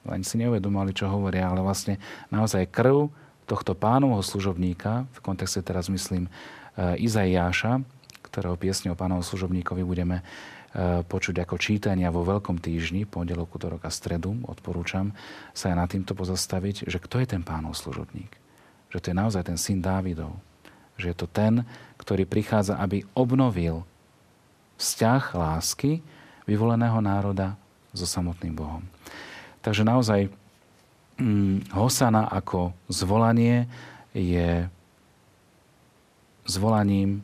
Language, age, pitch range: Slovak, 40-59, 90-105 Hz